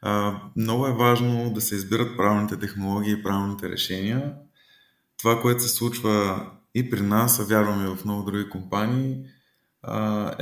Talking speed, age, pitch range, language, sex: 155 wpm, 20-39, 100-120 Hz, Bulgarian, male